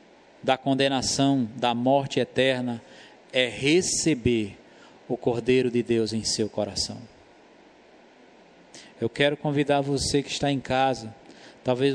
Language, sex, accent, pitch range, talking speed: Portuguese, male, Brazilian, 125-145 Hz, 115 wpm